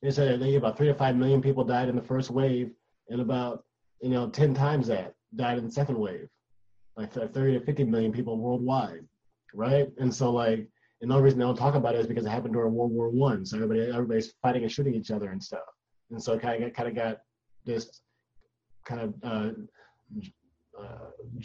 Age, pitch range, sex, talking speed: 30-49, 110-135 Hz, male, 215 wpm